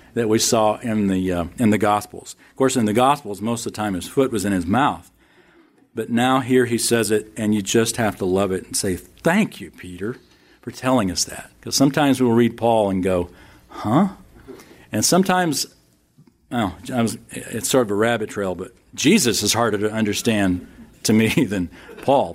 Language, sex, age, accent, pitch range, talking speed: English, male, 50-69, American, 90-120 Hz, 200 wpm